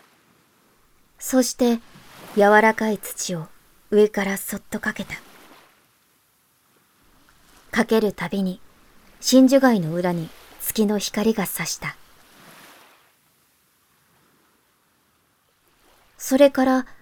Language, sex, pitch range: Japanese, male, 180-220 Hz